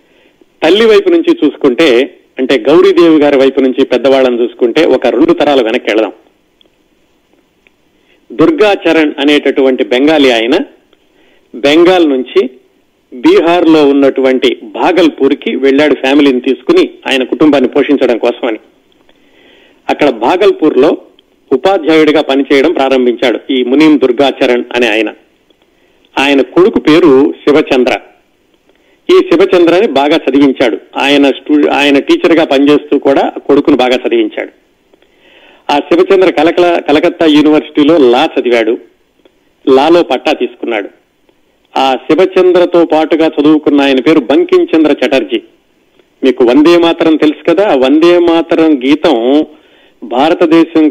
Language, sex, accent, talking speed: Telugu, male, native, 105 wpm